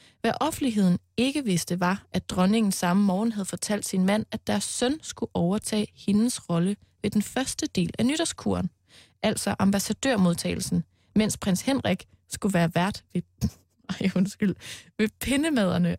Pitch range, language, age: 175-230 Hz, Danish, 20-39